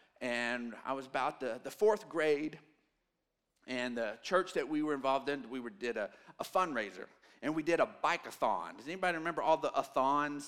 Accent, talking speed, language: American, 190 wpm, English